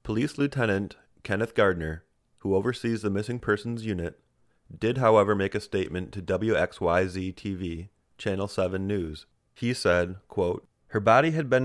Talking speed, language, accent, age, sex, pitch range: 140 wpm, English, American, 30-49, male, 95-120 Hz